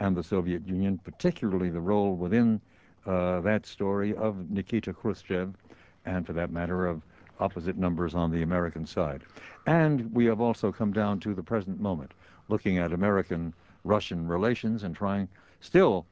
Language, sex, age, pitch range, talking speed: English, male, 60-79, 90-115 Hz, 155 wpm